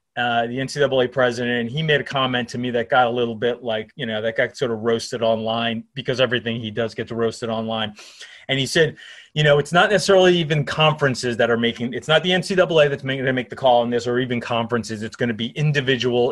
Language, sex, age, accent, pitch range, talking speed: English, male, 30-49, American, 120-150 Hz, 240 wpm